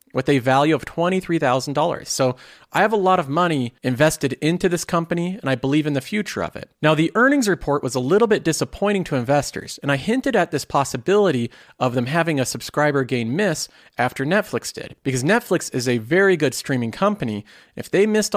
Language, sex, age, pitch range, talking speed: English, male, 40-59, 135-195 Hz, 205 wpm